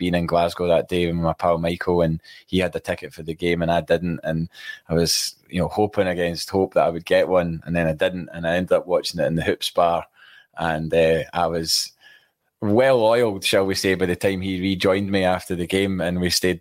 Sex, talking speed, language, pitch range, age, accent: male, 245 wpm, English, 85-95 Hz, 20-39, British